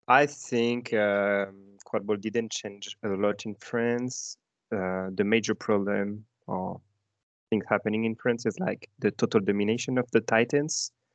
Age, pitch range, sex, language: 20-39, 100-115 Hz, male, English